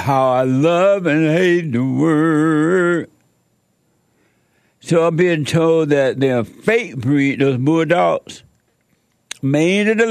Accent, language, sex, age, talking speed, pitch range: American, English, male, 60-79, 120 wpm, 120-165 Hz